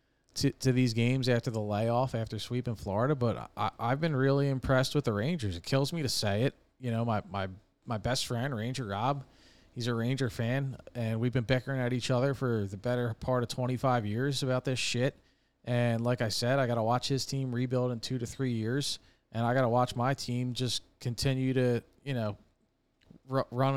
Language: English